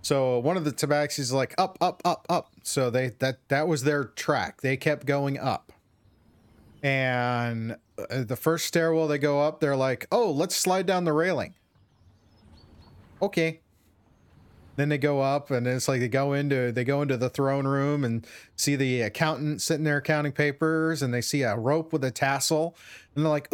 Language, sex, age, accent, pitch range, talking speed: English, male, 30-49, American, 125-150 Hz, 185 wpm